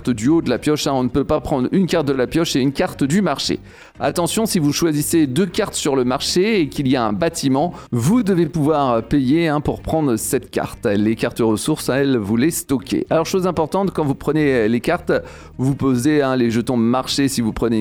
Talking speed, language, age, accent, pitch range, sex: 235 wpm, French, 40-59, French, 125-170 Hz, male